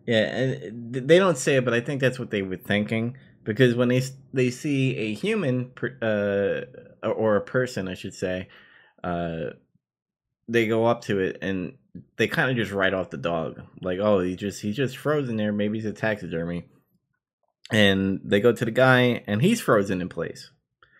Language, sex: English, male